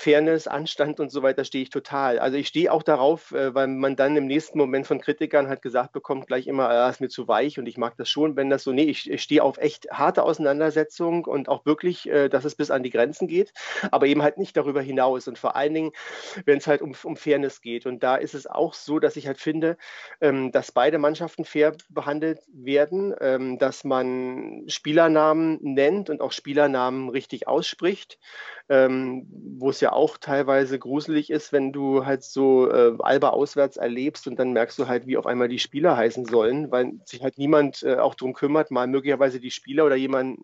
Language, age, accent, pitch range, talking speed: German, 40-59, German, 130-150 Hz, 215 wpm